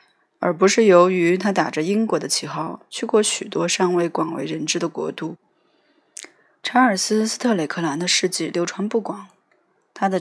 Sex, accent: female, native